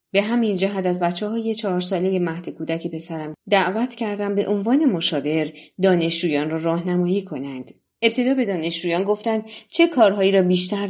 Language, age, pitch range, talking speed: Persian, 30-49, 165-205 Hz, 160 wpm